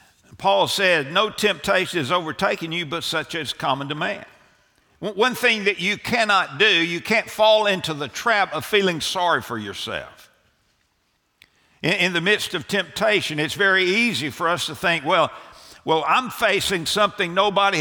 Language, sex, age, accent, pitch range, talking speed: English, male, 60-79, American, 160-205 Hz, 160 wpm